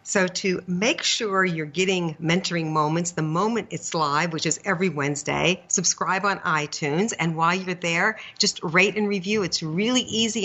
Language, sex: English, female